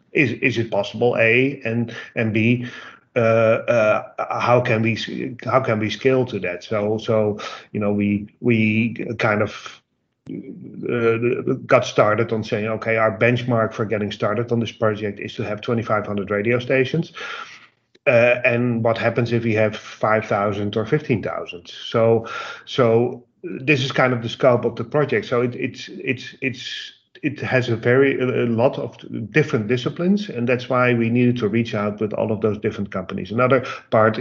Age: 40-59